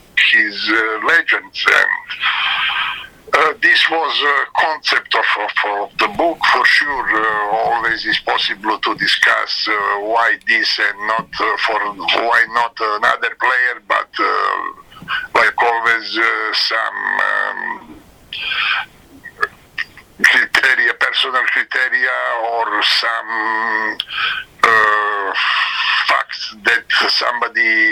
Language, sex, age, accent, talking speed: English, male, 60-79, Italian, 105 wpm